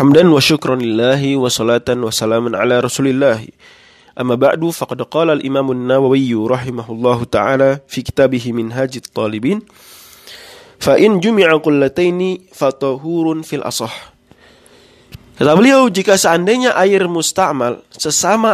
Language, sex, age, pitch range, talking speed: Indonesian, male, 20-39, 125-165 Hz, 60 wpm